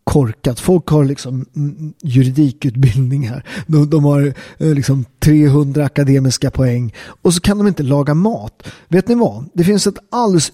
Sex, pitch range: male, 140-185 Hz